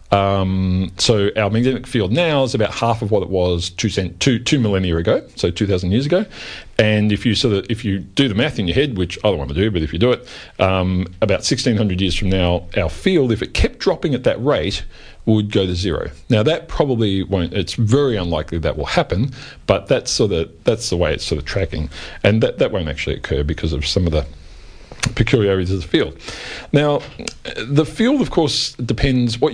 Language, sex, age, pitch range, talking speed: English, male, 40-59, 95-125 Hz, 225 wpm